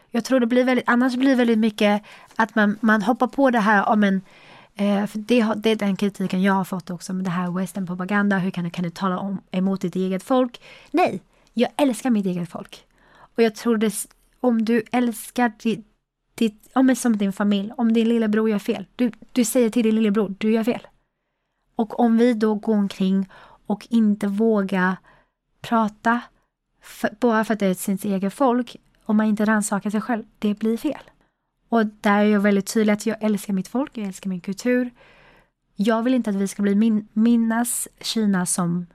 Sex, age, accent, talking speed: female, 30-49, native, 205 wpm